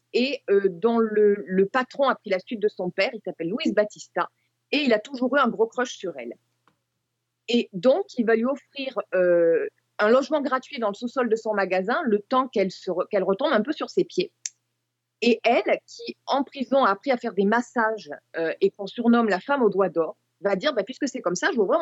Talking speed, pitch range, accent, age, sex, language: 235 wpm, 200-265 Hz, French, 20-39, female, French